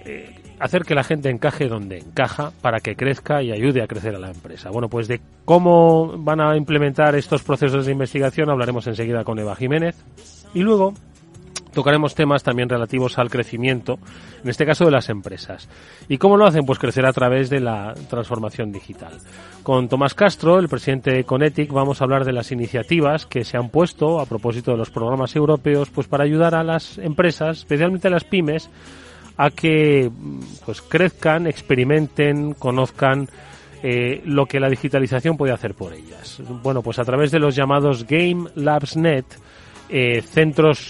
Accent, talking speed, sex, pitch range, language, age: Spanish, 175 wpm, male, 120-155 Hz, Spanish, 30-49